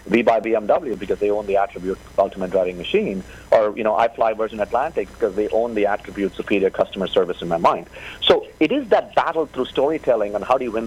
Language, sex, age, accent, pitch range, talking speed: English, male, 50-69, Indian, 100-125 Hz, 225 wpm